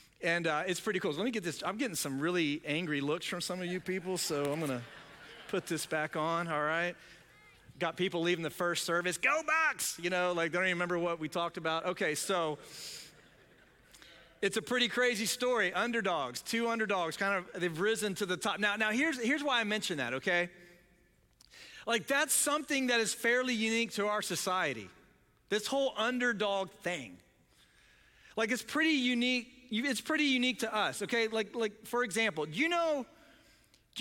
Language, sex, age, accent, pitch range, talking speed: English, male, 40-59, American, 180-240 Hz, 190 wpm